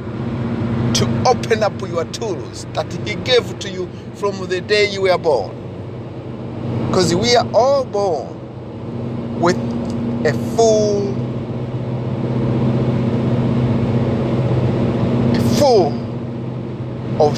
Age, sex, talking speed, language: 60-79, male, 95 wpm, English